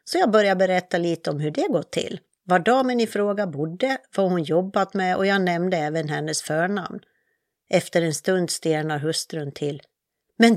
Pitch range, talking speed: 160-205 Hz, 180 wpm